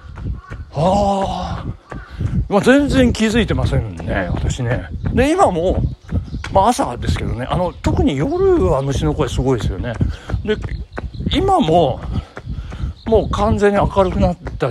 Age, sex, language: 60-79, male, Japanese